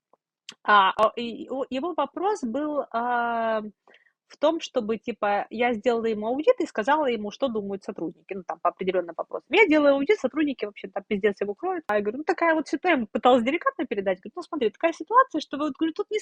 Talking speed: 195 wpm